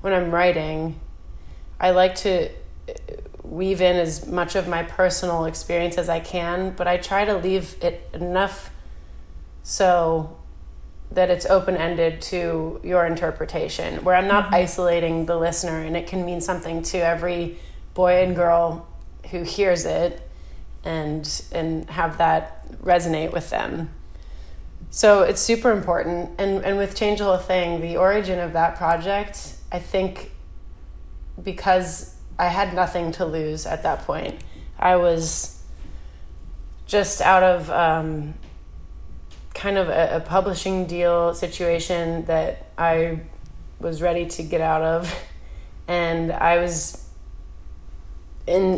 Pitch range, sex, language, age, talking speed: 160-180 Hz, female, English, 30-49, 135 wpm